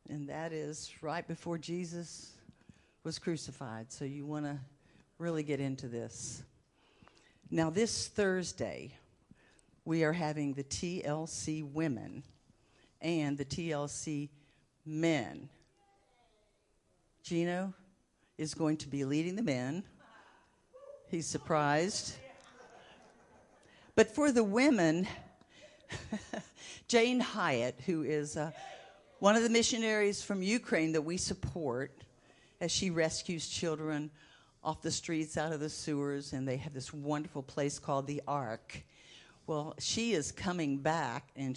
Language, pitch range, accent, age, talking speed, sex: English, 140-175 Hz, American, 60-79, 120 wpm, female